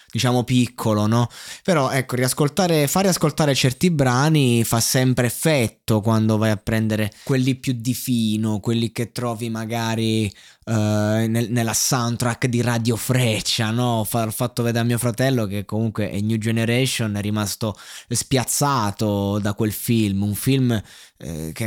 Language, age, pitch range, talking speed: Italian, 20-39, 110-130 Hz, 150 wpm